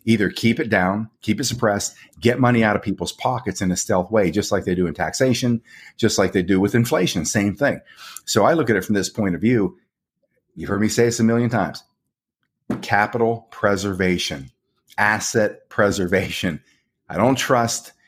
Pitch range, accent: 90-115 Hz, American